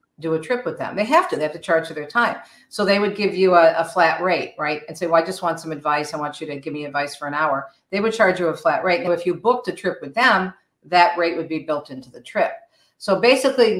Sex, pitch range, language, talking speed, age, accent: female, 160-195 Hz, English, 295 wpm, 50-69, American